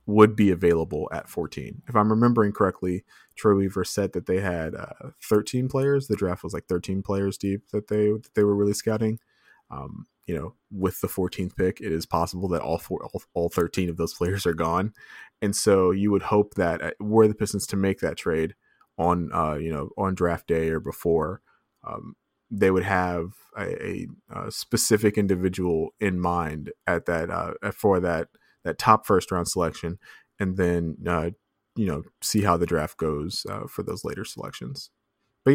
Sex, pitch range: male, 90-110 Hz